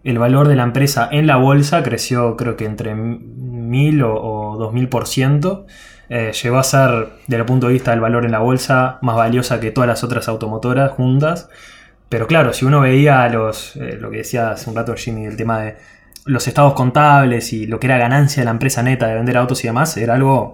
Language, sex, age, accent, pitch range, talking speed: Spanish, male, 20-39, Argentinian, 115-145 Hz, 210 wpm